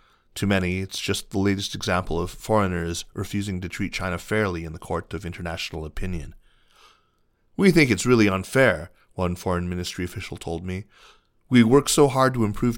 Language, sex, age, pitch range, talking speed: English, male, 30-49, 90-110 Hz, 175 wpm